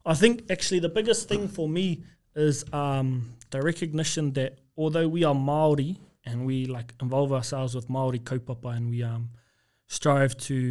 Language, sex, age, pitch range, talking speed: English, male, 20-39, 120-140 Hz, 170 wpm